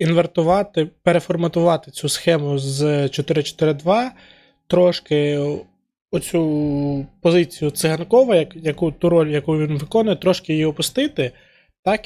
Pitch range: 145-180 Hz